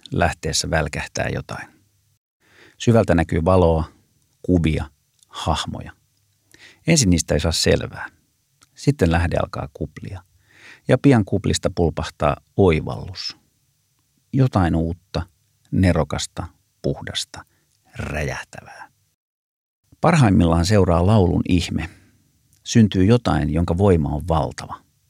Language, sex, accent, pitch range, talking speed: Finnish, male, native, 85-105 Hz, 90 wpm